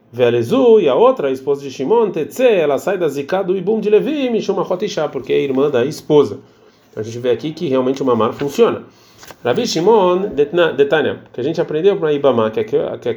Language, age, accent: Portuguese, 30-49, Brazilian